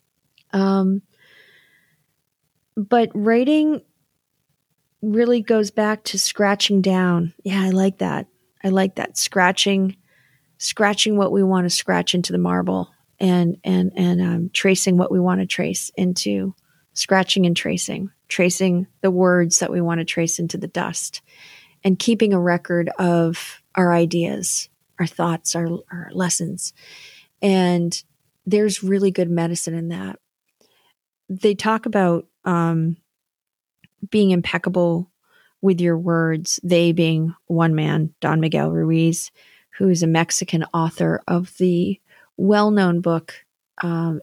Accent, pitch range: American, 165-195 Hz